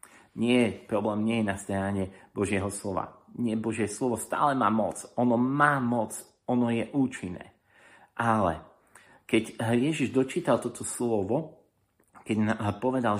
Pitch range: 100-130 Hz